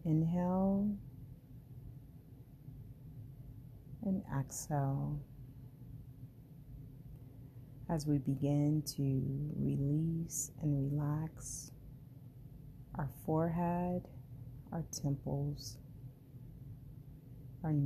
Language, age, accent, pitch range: English, 30-49, American, 130-150 Hz